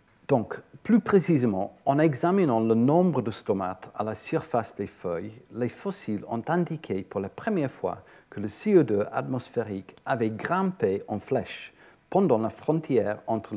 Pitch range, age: 100-125 Hz, 50-69